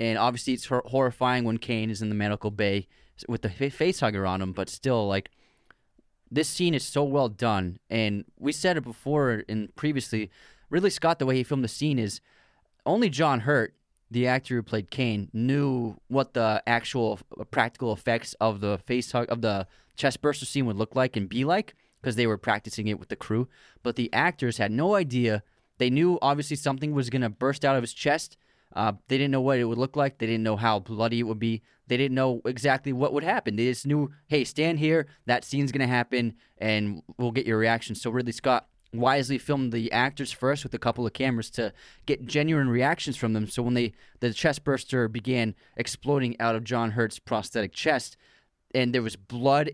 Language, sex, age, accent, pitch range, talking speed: English, male, 20-39, American, 110-135 Hz, 205 wpm